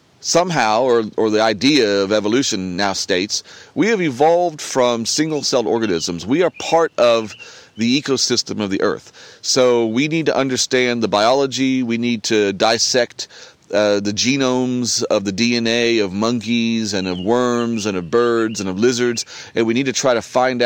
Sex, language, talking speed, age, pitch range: male, English, 170 wpm, 40-59, 105-125 Hz